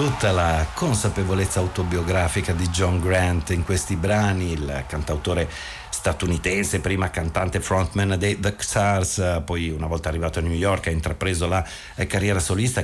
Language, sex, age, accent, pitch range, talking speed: Italian, male, 50-69, native, 80-100 Hz, 145 wpm